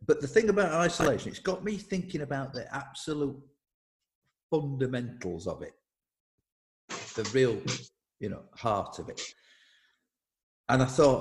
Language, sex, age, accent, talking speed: English, male, 50-69, British, 135 wpm